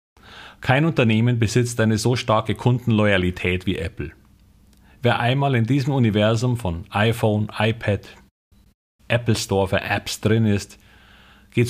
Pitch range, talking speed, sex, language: 95-120 Hz, 125 wpm, male, German